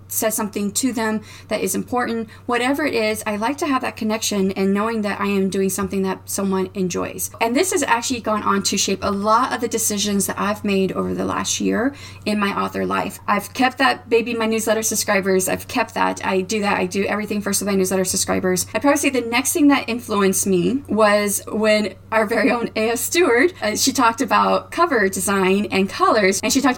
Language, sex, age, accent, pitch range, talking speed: English, female, 30-49, American, 190-235 Hz, 220 wpm